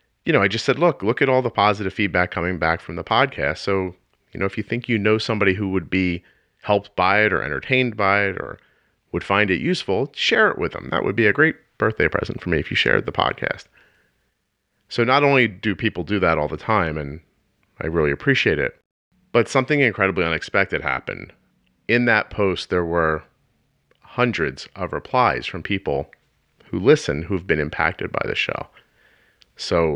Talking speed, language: 195 wpm, English